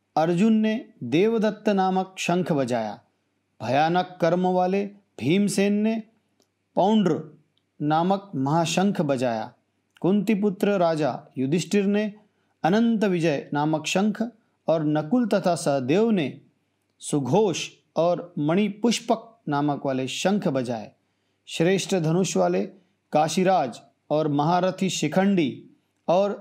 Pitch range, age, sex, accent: 150-200 Hz, 40-59, male, native